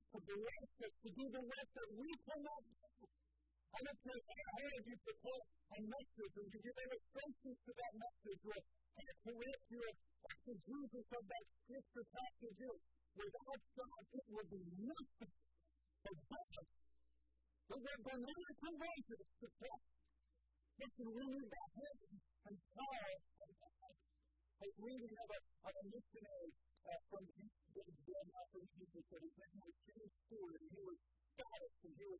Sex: female